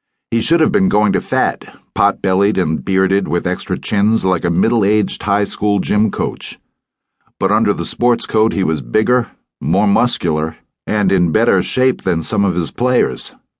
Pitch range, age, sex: 90-115 Hz, 50-69, male